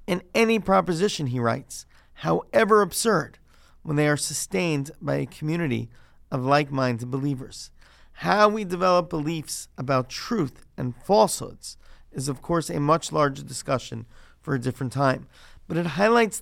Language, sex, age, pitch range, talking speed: English, male, 40-59, 130-175 Hz, 145 wpm